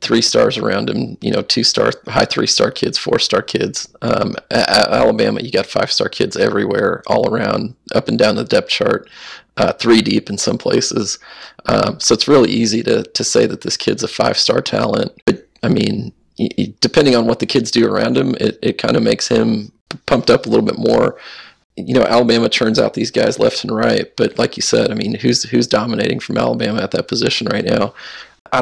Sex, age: male, 30-49